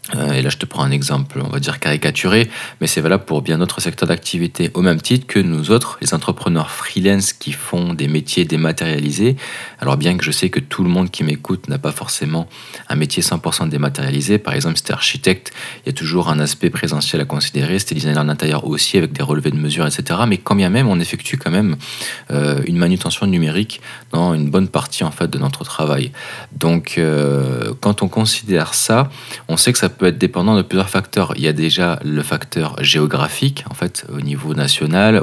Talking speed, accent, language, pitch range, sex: 210 wpm, French, French, 75-95 Hz, male